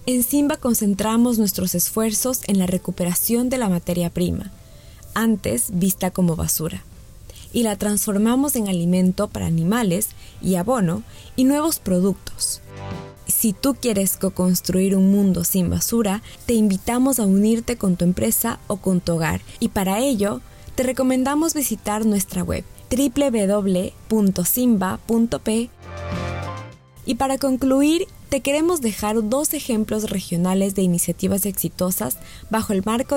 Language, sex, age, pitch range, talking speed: Spanish, female, 20-39, 185-240 Hz, 130 wpm